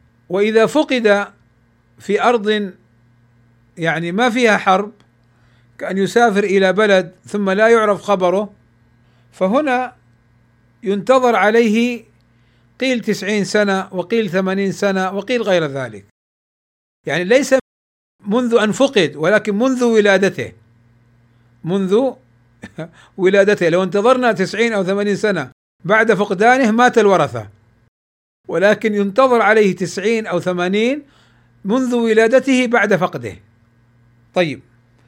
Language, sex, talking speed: Arabic, male, 100 wpm